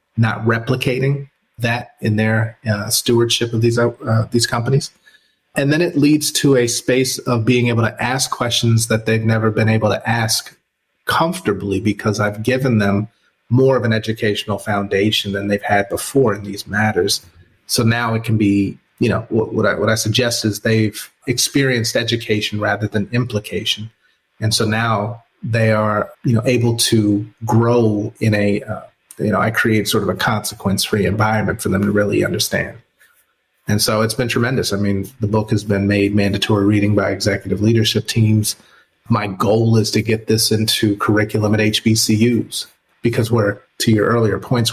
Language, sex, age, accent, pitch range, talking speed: English, male, 30-49, American, 105-120 Hz, 175 wpm